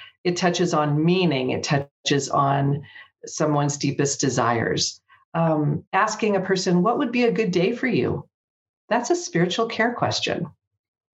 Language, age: English, 50-69